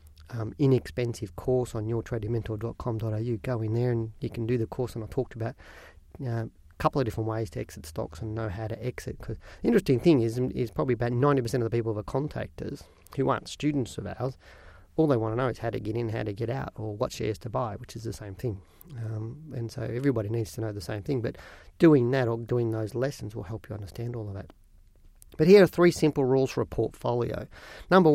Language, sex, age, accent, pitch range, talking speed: English, male, 40-59, Australian, 110-140 Hz, 235 wpm